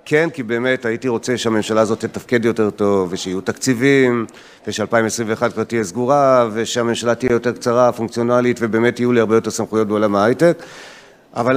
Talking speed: 155 wpm